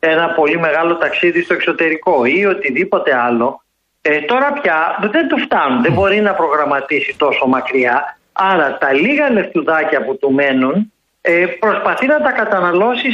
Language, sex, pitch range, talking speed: Greek, male, 170-245 Hz, 140 wpm